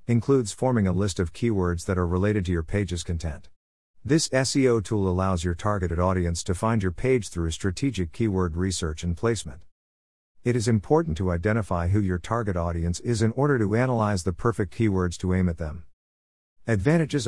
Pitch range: 85-115 Hz